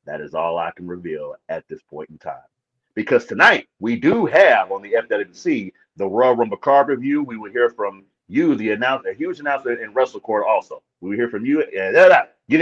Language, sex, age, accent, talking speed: English, male, 40-59, American, 210 wpm